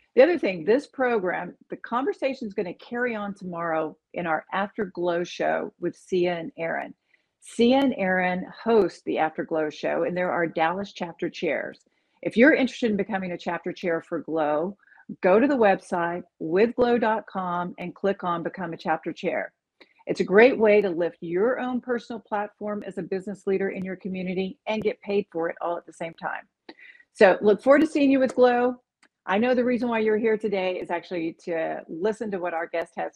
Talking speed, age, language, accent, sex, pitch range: 200 wpm, 50-69, English, American, female, 180-230 Hz